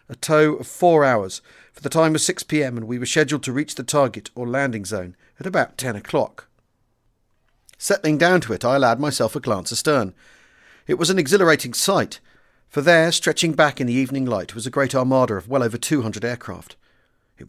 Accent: British